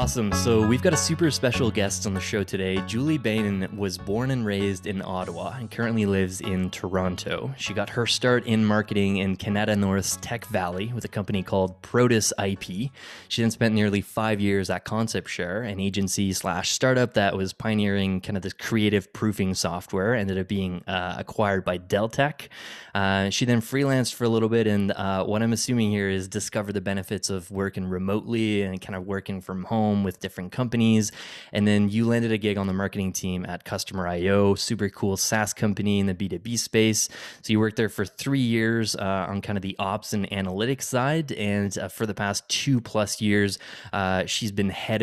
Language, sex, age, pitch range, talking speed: English, male, 20-39, 95-110 Hz, 200 wpm